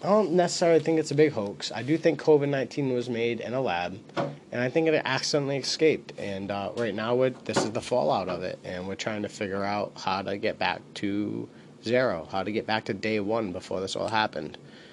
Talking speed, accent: 225 wpm, American